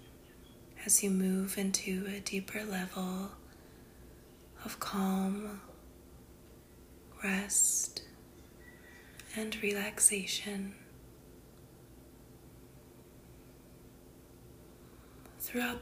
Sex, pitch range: female, 175-215 Hz